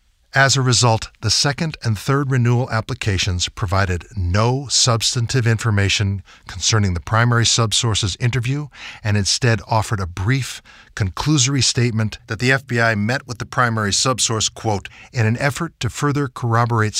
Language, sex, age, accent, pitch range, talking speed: English, male, 50-69, American, 100-125 Hz, 140 wpm